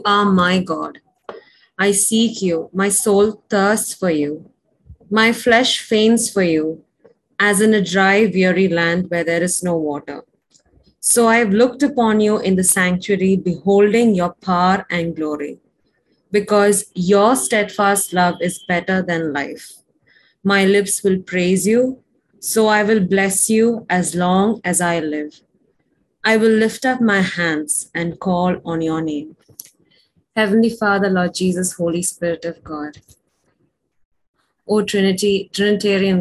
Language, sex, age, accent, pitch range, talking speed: Malayalam, female, 20-39, native, 175-215 Hz, 145 wpm